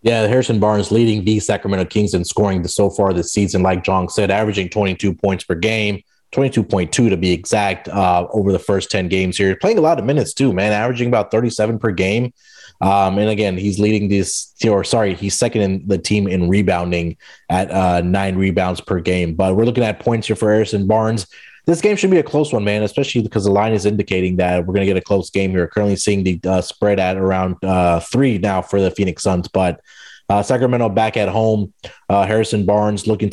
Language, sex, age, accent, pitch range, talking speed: English, male, 20-39, American, 95-120 Hz, 220 wpm